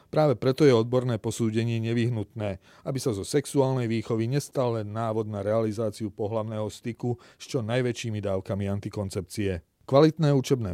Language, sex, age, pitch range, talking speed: Slovak, male, 40-59, 105-125 Hz, 140 wpm